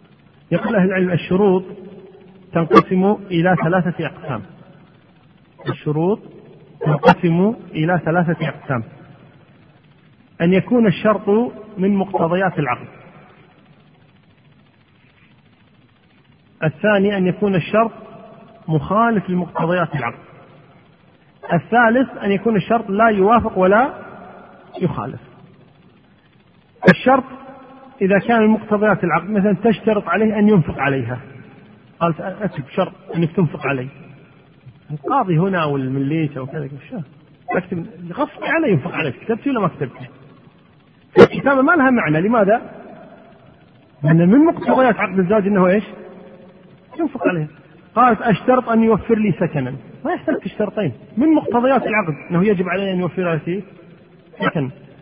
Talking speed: 110 wpm